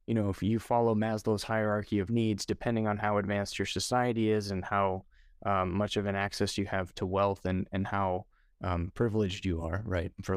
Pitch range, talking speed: 100-115 Hz, 210 wpm